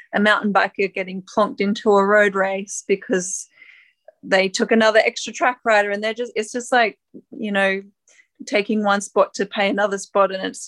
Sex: female